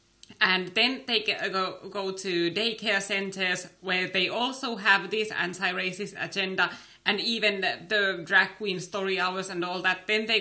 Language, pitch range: English, 175-220 Hz